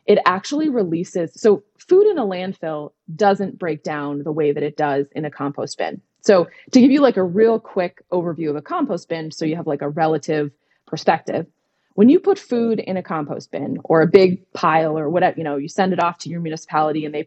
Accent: American